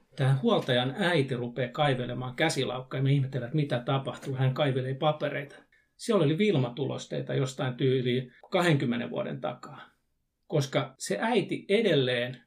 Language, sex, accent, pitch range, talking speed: Finnish, male, native, 125-155 Hz, 125 wpm